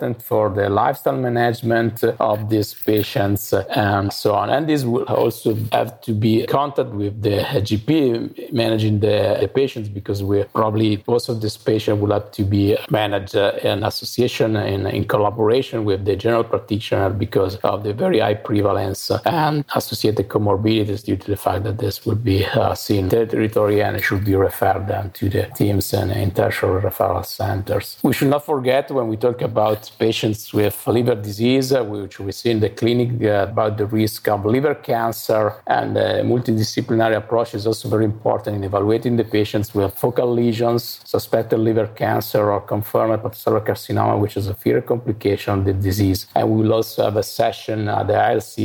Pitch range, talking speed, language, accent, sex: 100-115 Hz, 180 wpm, English, Italian, male